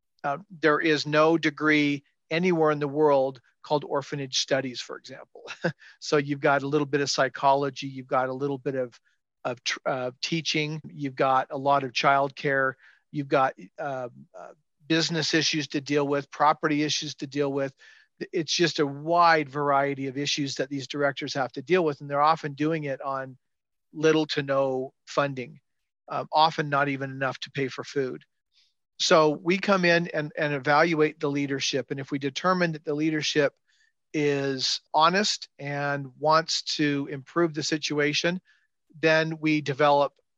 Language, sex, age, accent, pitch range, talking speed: English, male, 40-59, American, 140-155 Hz, 165 wpm